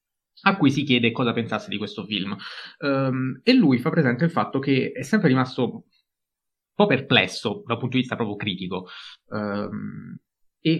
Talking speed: 160 wpm